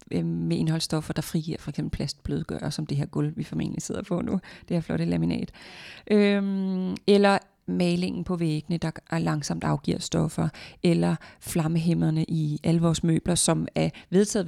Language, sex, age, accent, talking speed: Danish, female, 30-49, native, 160 wpm